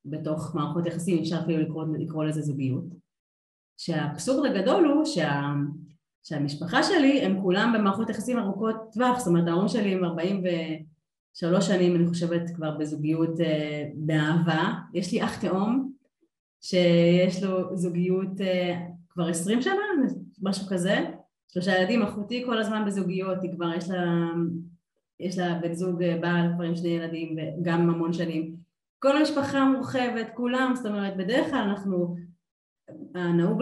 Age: 30-49